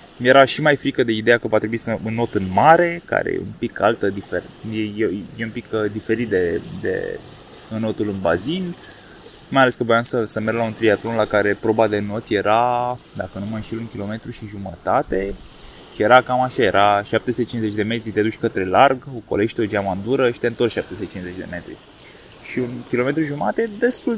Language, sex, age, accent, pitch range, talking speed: Romanian, male, 20-39, native, 110-165 Hz, 210 wpm